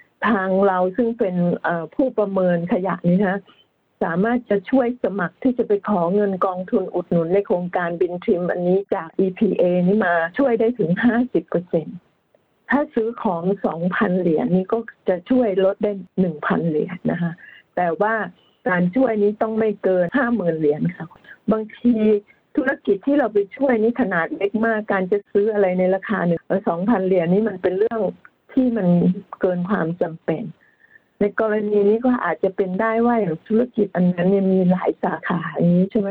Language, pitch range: Thai, 180-225 Hz